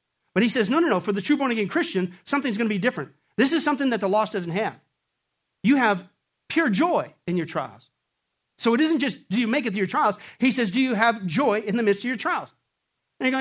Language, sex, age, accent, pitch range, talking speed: English, male, 50-69, American, 210-285 Hz, 255 wpm